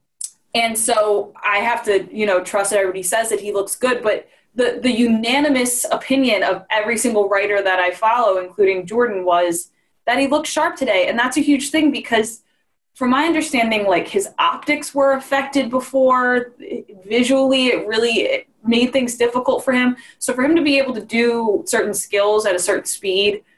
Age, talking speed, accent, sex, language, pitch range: 20-39, 185 wpm, American, female, English, 190-260 Hz